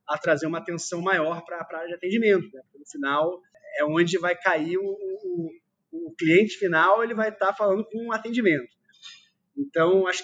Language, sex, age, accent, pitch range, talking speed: Portuguese, male, 20-39, Brazilian, 170-225 Hz, 195 wpm